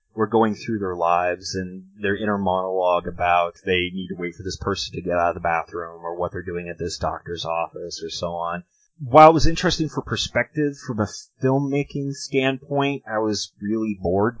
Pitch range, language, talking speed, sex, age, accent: 95-130 Hz, English, 200 wpm, male, 30-49, American